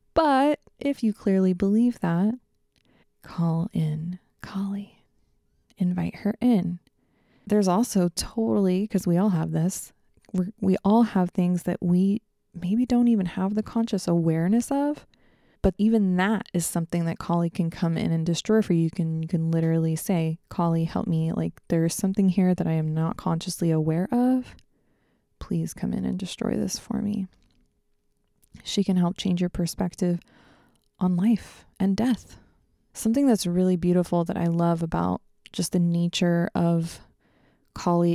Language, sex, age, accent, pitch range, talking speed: English, female, 20-39, American, 170-210 Hz, 155 wpm